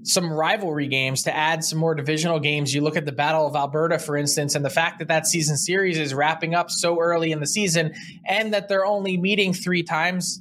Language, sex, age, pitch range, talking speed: English, male, 20-39, 145-175 Hz, 230 wpm